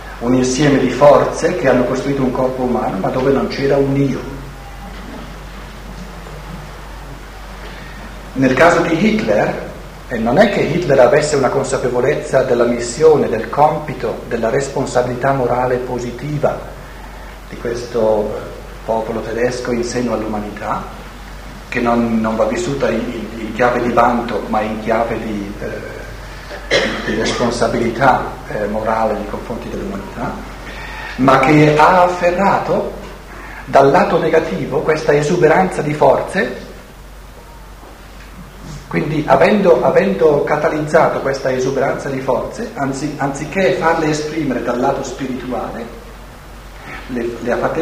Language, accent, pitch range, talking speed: Italian, native, 120-145 Hz, 120 wpm